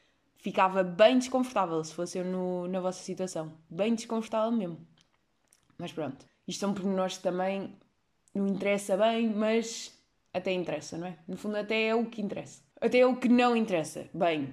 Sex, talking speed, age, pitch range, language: female, 170 wpm, 20-39, 180-220 Hz, Portuguese